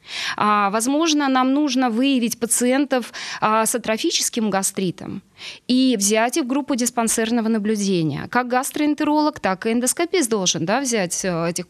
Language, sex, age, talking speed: Russian, female, 20-39, 125 wpm